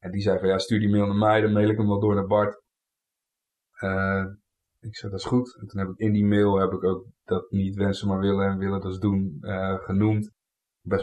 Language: Dutch